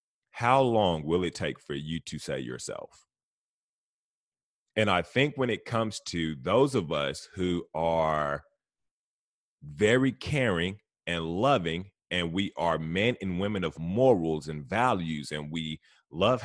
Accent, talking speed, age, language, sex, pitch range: American, 140 wpm, 30-49, English, male, 85-110 Hz